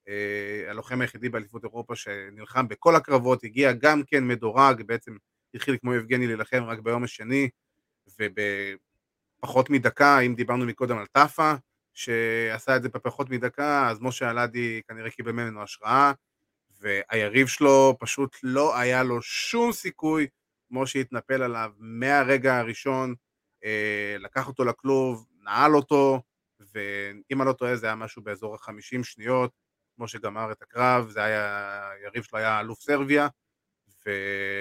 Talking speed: 135 wpm